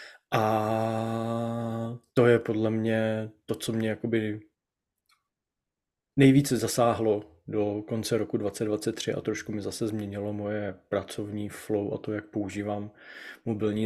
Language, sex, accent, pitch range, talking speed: Czech, male, native, 105-115 Hz, 115 wpm